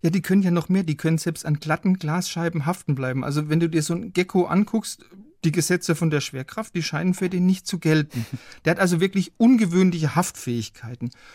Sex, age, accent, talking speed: male, 40-59, German, 210 wpm